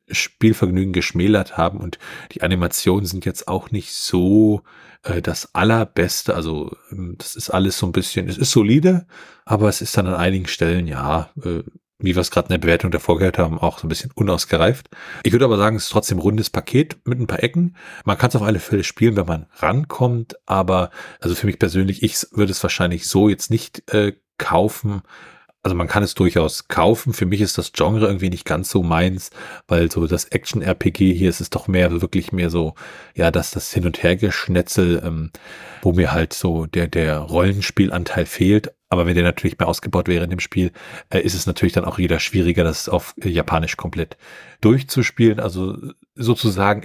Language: German